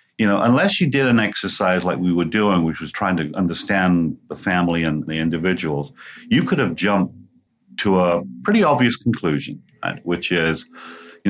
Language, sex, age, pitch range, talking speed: English, male, 50-69, 85-100 Hz, 175 wpm